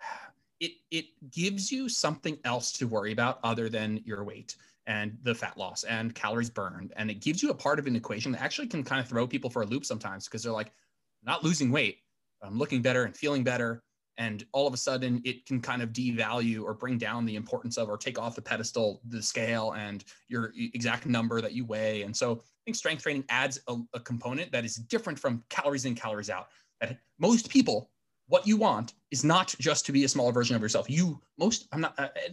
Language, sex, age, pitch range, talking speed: English, male, 20-39, 115-145 Hz, 225 wpm